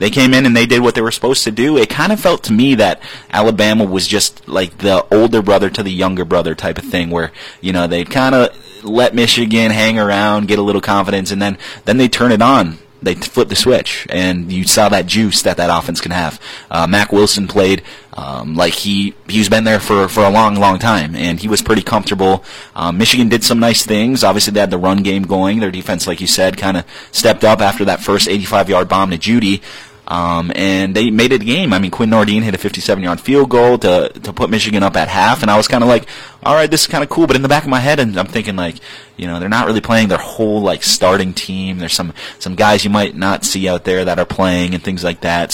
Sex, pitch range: male, 95-115 Hz